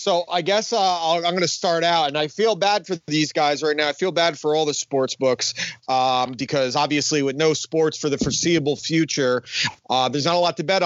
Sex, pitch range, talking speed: male, 145-180 Hz, 240 wpm